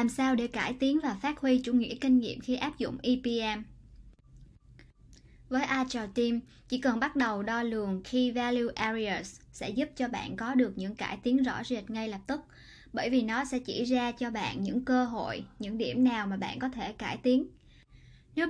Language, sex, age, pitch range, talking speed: Vietnamese, male, 10-29, 215-255 Hz, 205 wpm